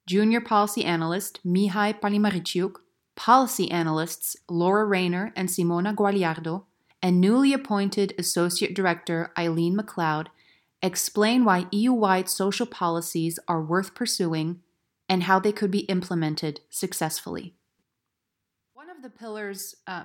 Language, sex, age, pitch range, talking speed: English, female, 30-49, 170-205 Hz, 115 wpm